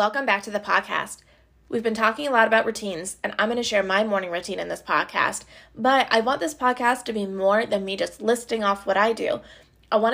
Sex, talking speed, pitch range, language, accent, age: female, 245 wpm, 205-245 Hz, English, American, 20-39